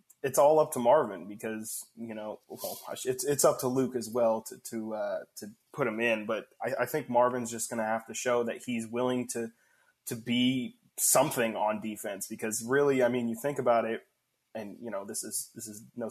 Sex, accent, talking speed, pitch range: male, American, 215 wpm, 115-135 Hz